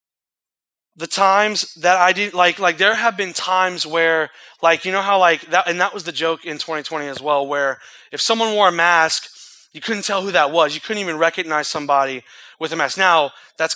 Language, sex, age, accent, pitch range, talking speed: English, male, 20-39, American, 155-205 Hz, 215 wpm